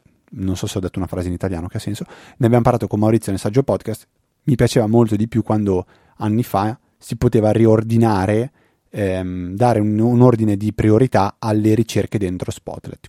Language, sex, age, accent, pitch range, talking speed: Italian, male, 30-49, native, 100-125 Hz, 195 wpm